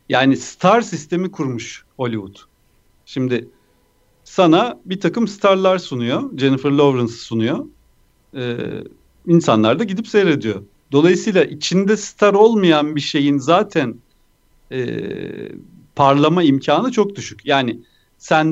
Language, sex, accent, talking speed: Turkish, male, native, 105 wpm